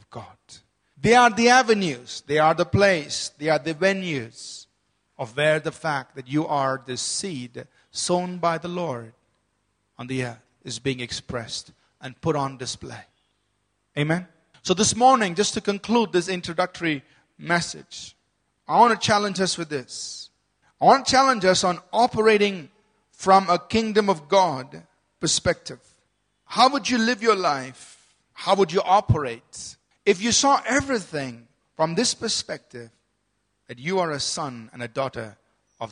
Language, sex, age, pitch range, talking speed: English, male, 40-59, 125-190 Hz, 155 wpm